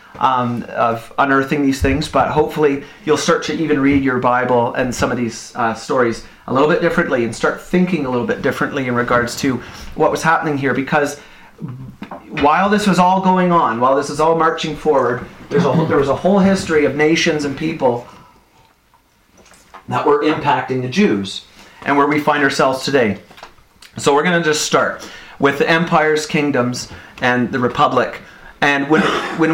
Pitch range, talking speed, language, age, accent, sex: 125-155 Hz, 185 wpm, English, 30-49, American, male